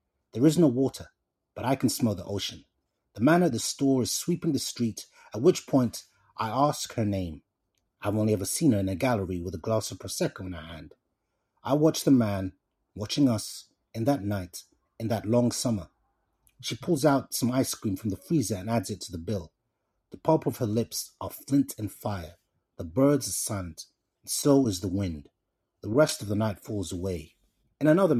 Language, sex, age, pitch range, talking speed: English, male, 30-49, 95-135 Hz, 205 wpm